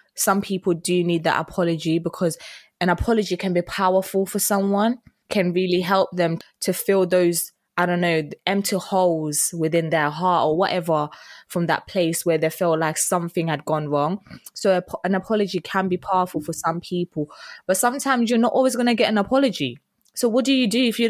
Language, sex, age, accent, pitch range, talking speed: English, female, 20-39, British, 175-235 Hz, 195 wpm